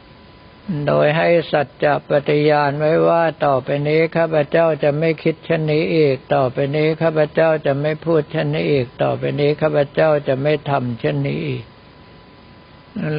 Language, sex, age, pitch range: Thai, male, 60-79, 140-165 Hz